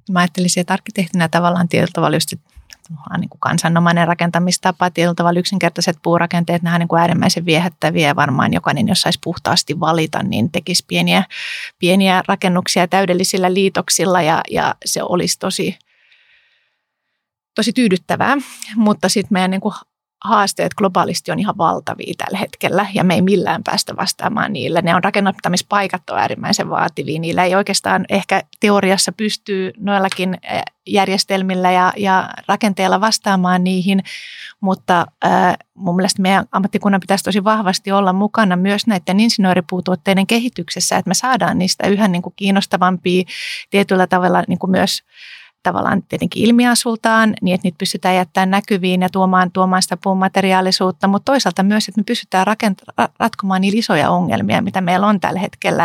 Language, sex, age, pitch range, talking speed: Finnish, female, 30-49, 180-200 Hz, 145 wpm